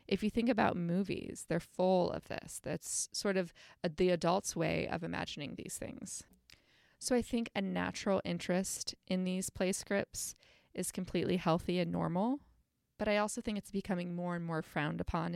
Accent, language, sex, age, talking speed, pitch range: American, English, female, 20-39, 175 wpm, 165-205 Hz